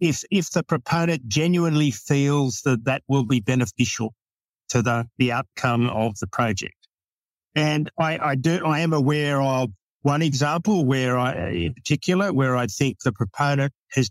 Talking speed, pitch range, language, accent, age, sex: 160 wpm, 125-155 Hz, English, Australian, 50-69, male